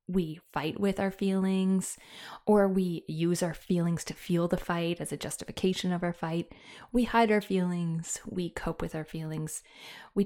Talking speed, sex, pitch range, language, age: 175 wpm, female, 175-220 Hz, English, 20-39